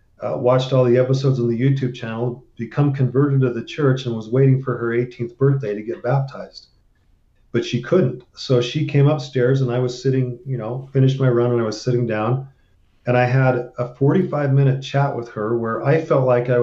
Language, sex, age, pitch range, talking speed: English, male, 40-59, 120-135 Hz, 210 wpm